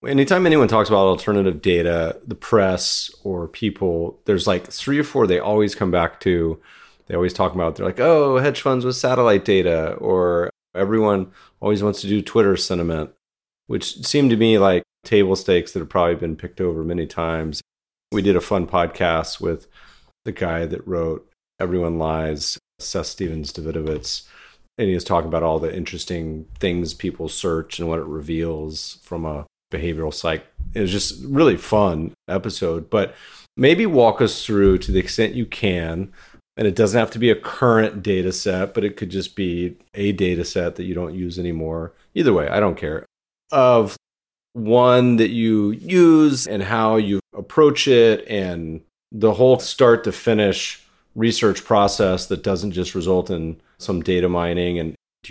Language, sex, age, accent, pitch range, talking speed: English, male, 30-49, American, 85-105 Hz, 175 wpm